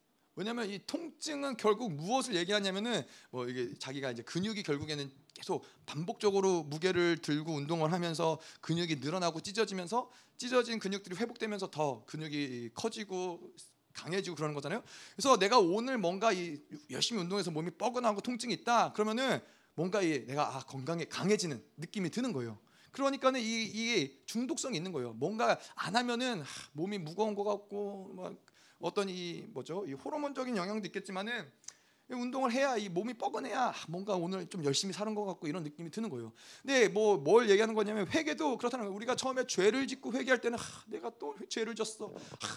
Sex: male